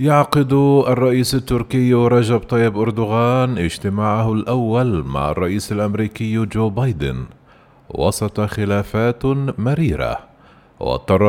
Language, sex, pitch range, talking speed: Arabic, male, 95-125 Hz, 90 wpm